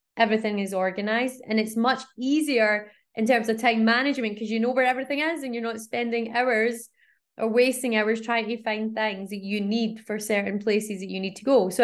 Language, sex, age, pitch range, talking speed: English, female, 20-39, 205-235 Hz, 215 wpm